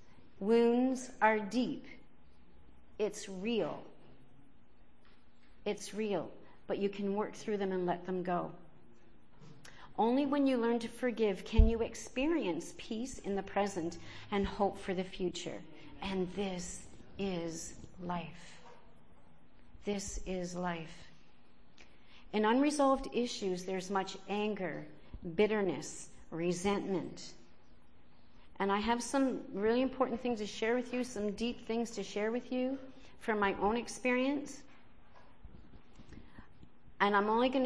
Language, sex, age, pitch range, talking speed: English, female, 50-69, 180-230 Hz, 120 wpm